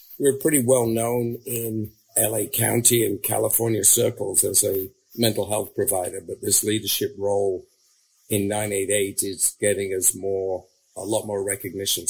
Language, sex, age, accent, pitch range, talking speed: English, male, 50-69, American, 100-125 Hz, 145 wpm